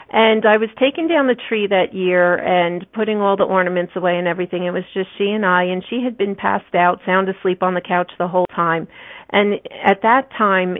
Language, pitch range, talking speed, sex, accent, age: English, 175-200 Hz, 230 wpm, female, American, 40-59